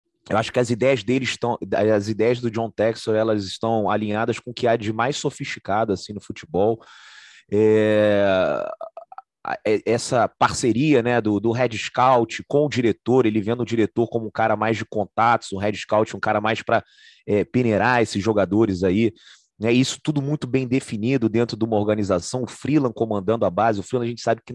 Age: 30-49